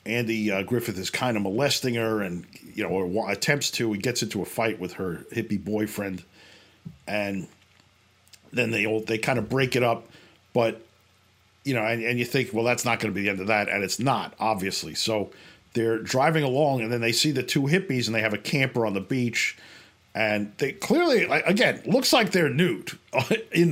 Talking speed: 205 wpm